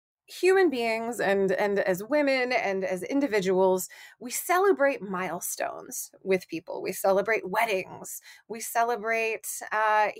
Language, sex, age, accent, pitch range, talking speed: English, female, 20-39, American, 200-300 Hz, 120 wpm